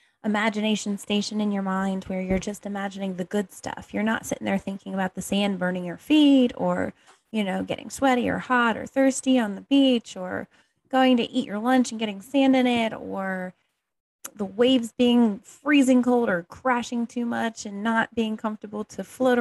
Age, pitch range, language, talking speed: 20-39, 195-250 Hz, English, 190 wpm